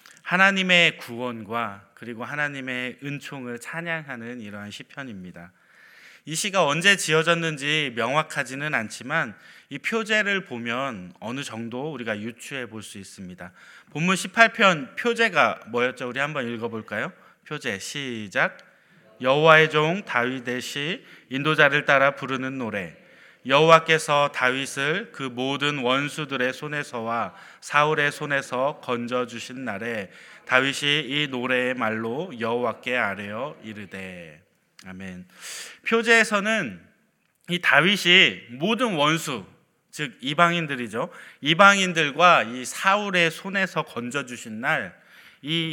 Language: Korean